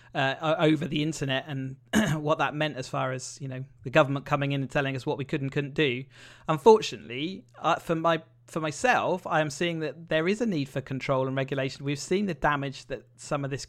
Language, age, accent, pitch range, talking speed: English, 30-49, British, 135-170 Hz, 230 wpm